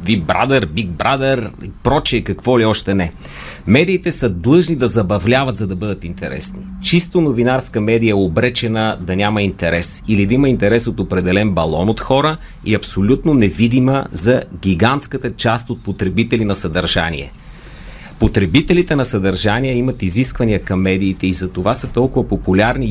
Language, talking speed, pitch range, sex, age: Bulgarian, 150 wpm, 95-130 Hz, male, 40-59